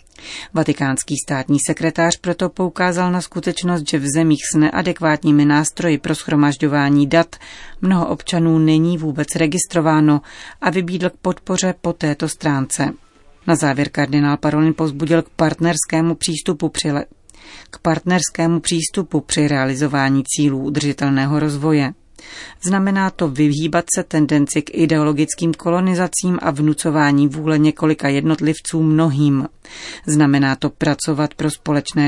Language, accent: Czech, native